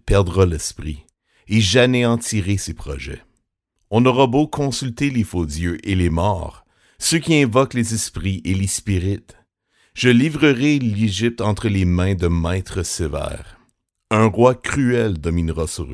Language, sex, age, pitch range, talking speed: French, male, 60-79, 85-115 Hz, 145 wpm